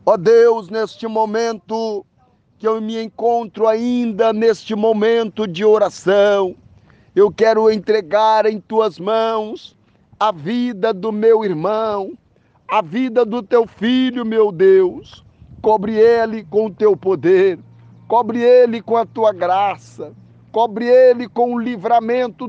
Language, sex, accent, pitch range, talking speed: Portuguese, male, Brazilian, 210-235 Hz, 130 wpm